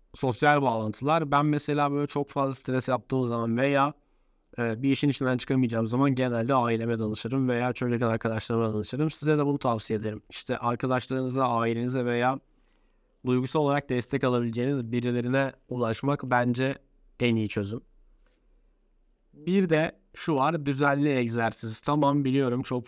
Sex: male